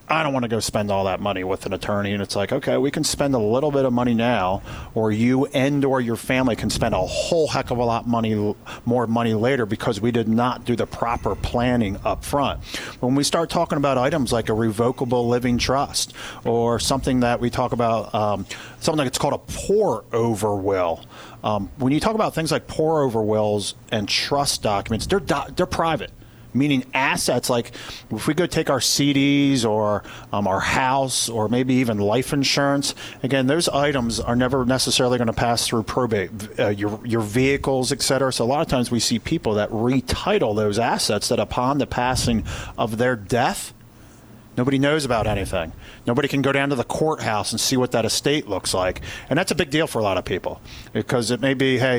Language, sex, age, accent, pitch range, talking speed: English, male, 40-59, American, 110-135 Hz, 210 wpm